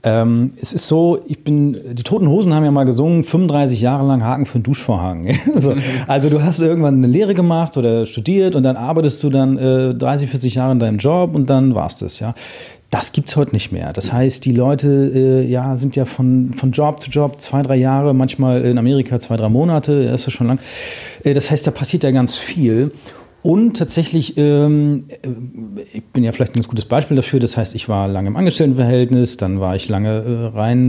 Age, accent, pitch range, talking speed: 40-59, German, 120-150 Hz, 210 wpm